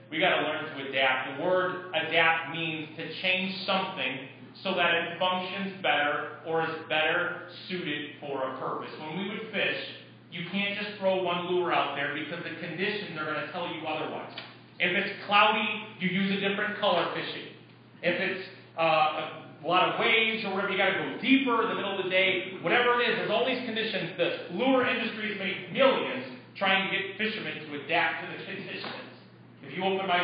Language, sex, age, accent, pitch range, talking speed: English, male, 30-49, American, 155-195 Hz, 200 wpm